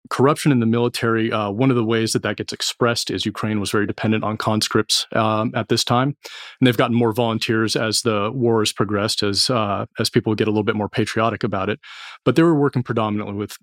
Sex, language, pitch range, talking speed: male, English, 110-125 Hz, 230 wpm